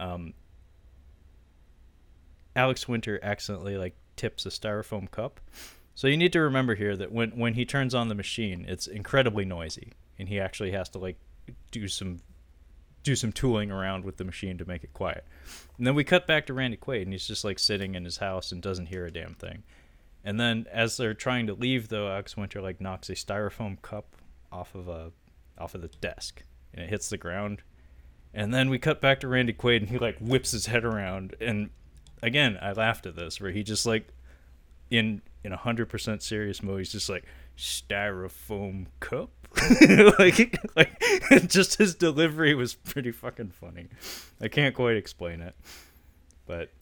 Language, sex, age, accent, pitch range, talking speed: English, male, 20-39, American, 85-115 Hz, 185 wpm